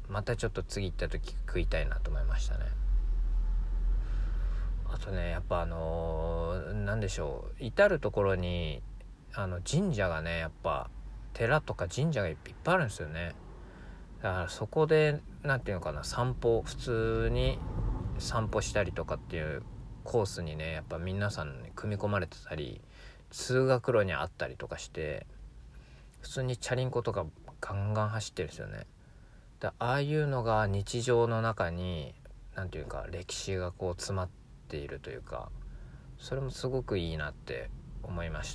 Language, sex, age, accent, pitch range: Japanese, male, 40-59, native, 80-110 Hz